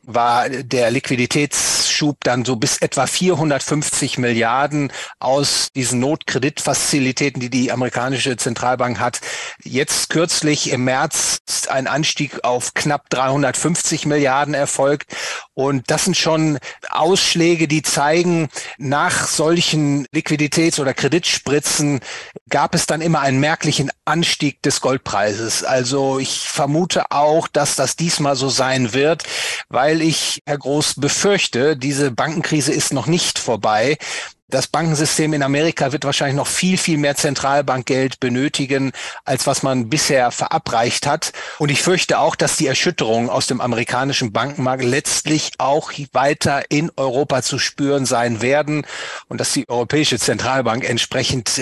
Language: German